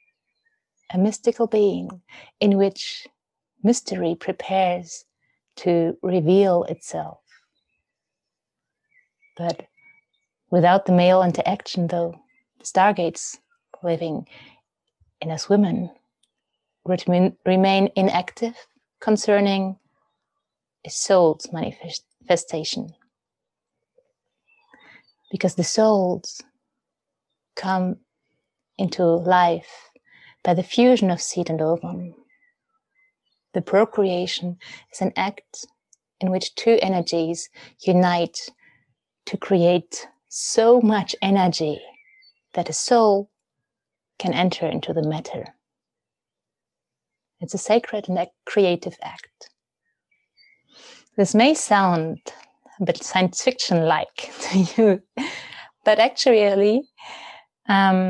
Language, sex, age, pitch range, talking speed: German, female, 30-49, 175-230 Hz, 85 wpm